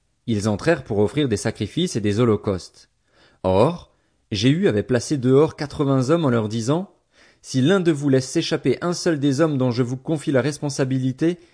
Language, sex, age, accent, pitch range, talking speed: French, male, 30-49, French, 105-140 Hz, 180 wpm